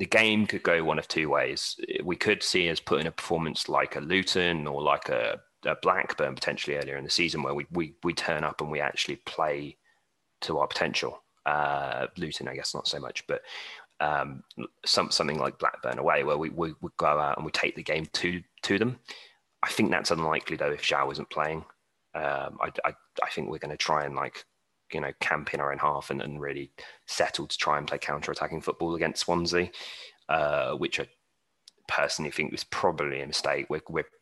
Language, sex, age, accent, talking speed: English, male, 30-49, British, 210 wpm